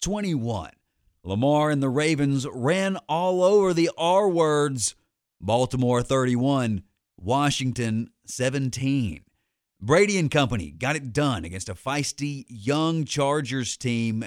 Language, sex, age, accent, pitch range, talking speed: English, male, 40-59, American, 115-150 Hz, 115 wpm